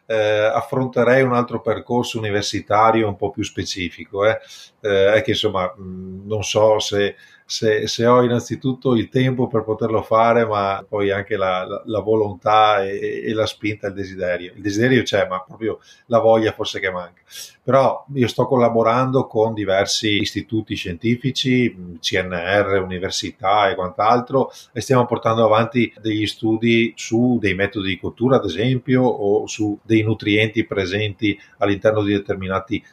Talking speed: 150 wpm